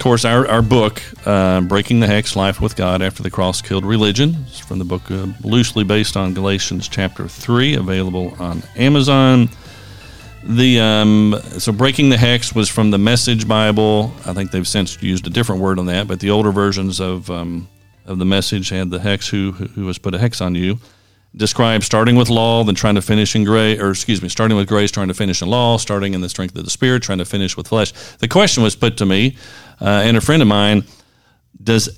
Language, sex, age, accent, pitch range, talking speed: English, male, 40-59, American, 95-120 Hz, 220 wpm